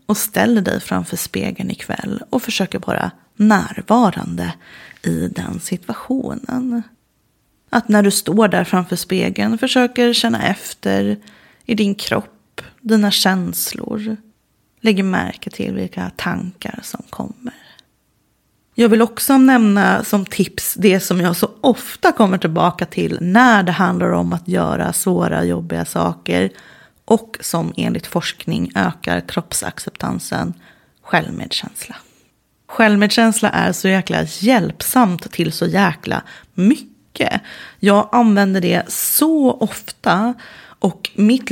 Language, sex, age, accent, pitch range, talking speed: Swedish, female, 30-49, native, 180-235 Hz, 120 wpm